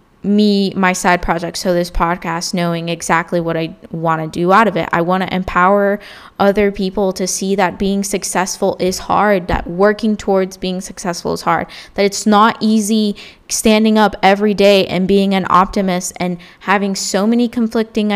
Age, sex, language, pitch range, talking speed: 10-29, female, English, 180-215 Hz, 180 wpm